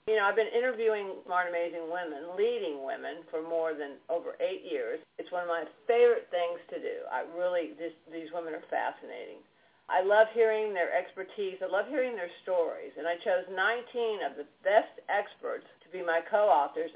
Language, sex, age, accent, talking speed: English, female, 50-69, American, 185 wpm